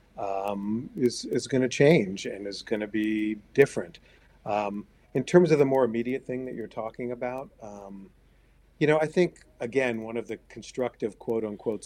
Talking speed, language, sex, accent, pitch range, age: 175 wpm, English, male, American, 110-130 Hz, 50-69